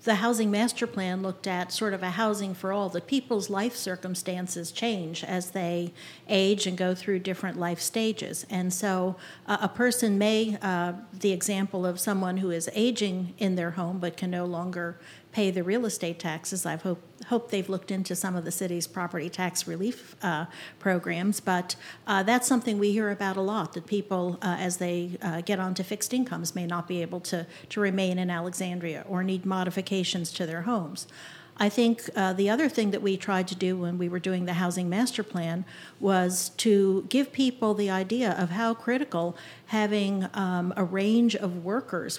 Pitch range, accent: 180-210 Hz, American